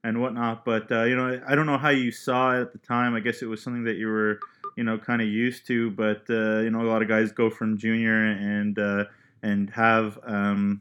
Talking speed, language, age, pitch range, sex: 255 wpm, English, 20-39, 105-120 Hz, male